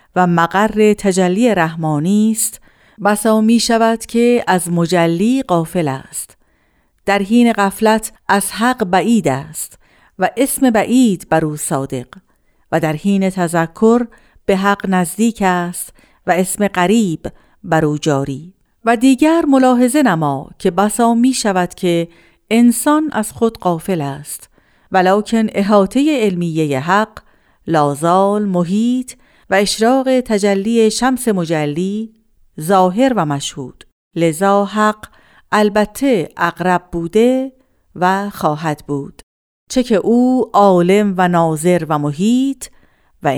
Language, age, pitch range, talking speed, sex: Persian, 50-69, 170-225 Hz, 115 wpm, female